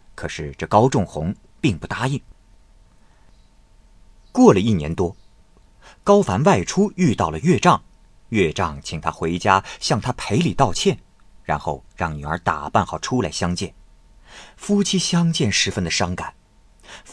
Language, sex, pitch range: Chinese, male, 85-115 Hz